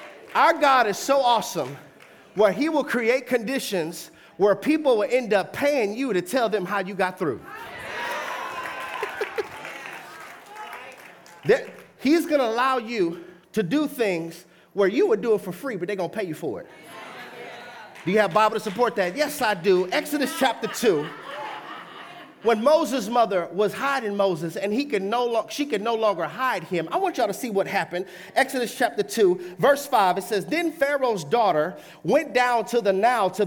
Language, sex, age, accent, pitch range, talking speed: English, male, 30-49, American, 190-280 Hz, 170 wpm